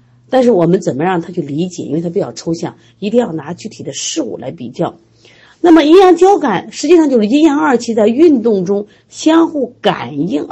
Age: 50-69